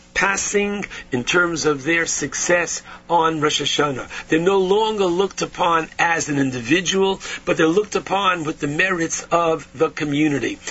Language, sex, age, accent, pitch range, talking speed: English, male, 50-69, American, 150-190 Hz, 150 wpm